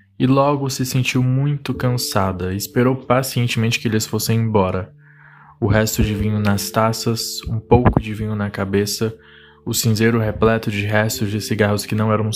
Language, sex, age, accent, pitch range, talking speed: Portuguese, male, 20-39, Brazilian, 100-120 Hz, 165 wpm